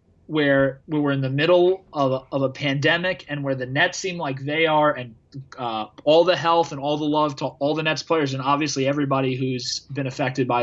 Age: 20-39